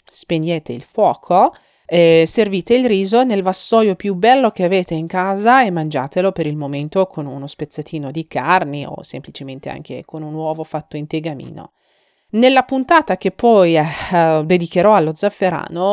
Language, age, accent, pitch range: Italian, 30-49, native, 160-200 Hz